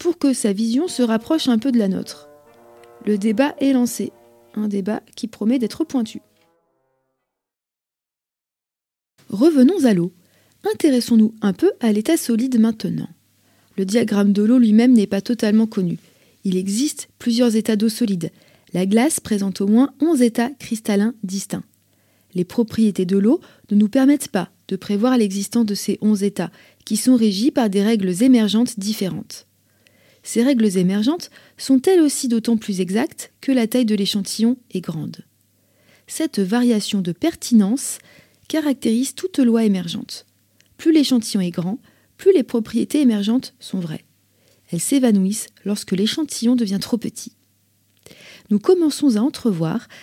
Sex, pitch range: female, 195-255 Hz